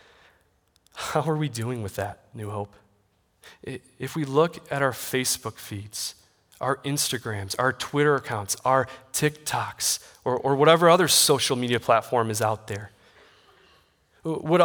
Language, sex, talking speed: English, male, 135 wpm